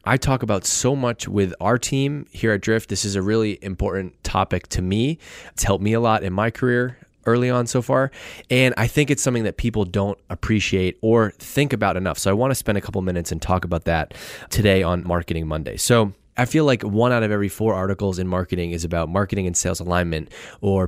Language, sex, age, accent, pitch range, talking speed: English, male, 20-39, American, 95-125 Hz, 225 wpm